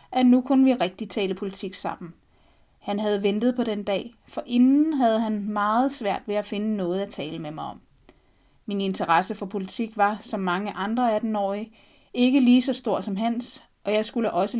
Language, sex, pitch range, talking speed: Danish, female, 195-235 Hz, 195 wpm